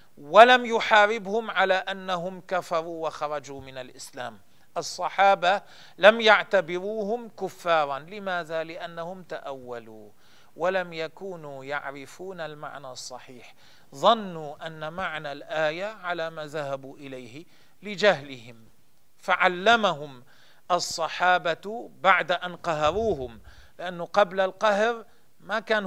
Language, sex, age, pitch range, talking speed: Arabic, male, 40-59, 140-190 Hz, 90 wpm